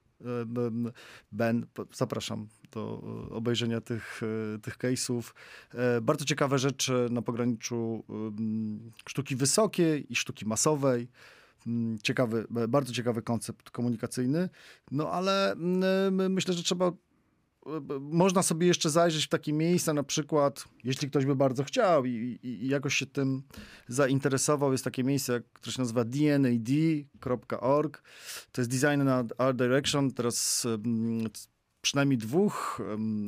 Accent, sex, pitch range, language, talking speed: native, male, 115-140 Hz, Polish, 115 wpm